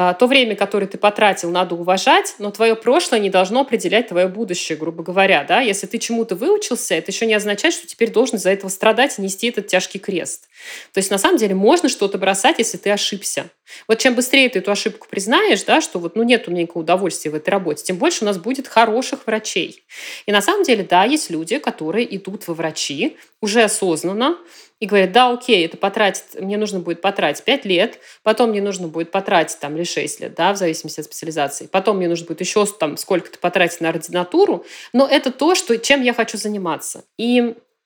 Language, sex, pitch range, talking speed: Russian, female, 175-230 Hz, 205 wpm